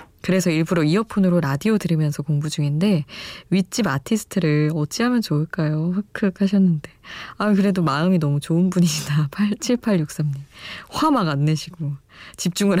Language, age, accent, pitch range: Korean, 20-39, native, 150-205 Hz